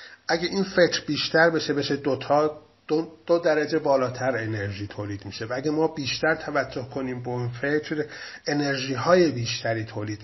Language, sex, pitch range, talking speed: Persian, male, 120-155 Hz, 160 wpm